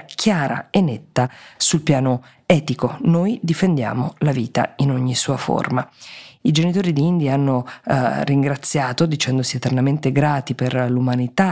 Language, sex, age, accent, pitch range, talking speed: Italian, female, 20-39, native, 125-155 Hz, 135 wpm